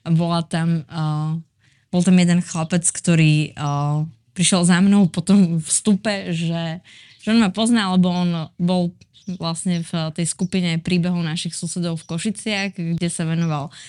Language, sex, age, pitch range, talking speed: Slovak, female, 20-39, 155-185 Hz, 145 wpm